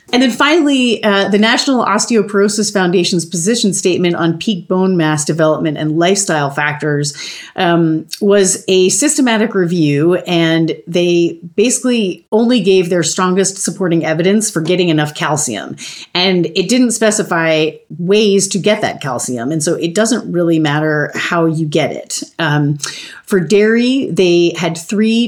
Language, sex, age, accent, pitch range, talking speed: English, female, 30-49, American, 155-200 Hz, 145 wpm